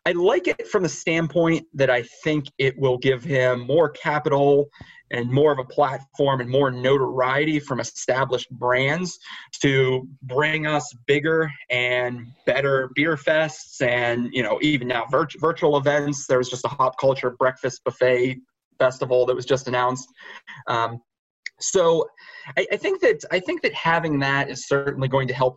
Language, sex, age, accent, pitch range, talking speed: English, male, 30-49, American, 130-150 Hz, 165 wpm